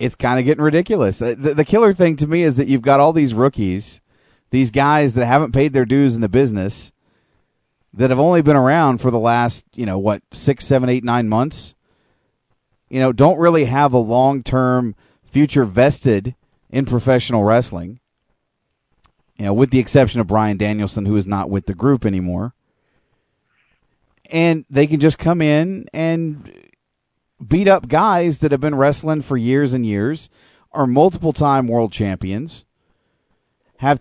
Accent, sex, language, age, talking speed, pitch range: American, male, English, 40-59, 170 wpm, 120-155 Hz